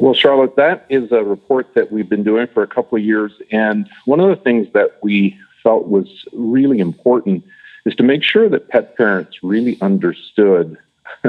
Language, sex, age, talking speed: English, male, 50-69, 185 wpm